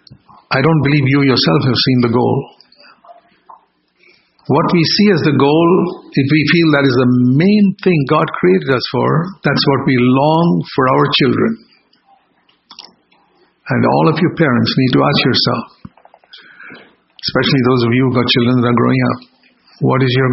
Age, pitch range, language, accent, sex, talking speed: 60-79, 120-150 Hz, English, Indian, male, 170 wpm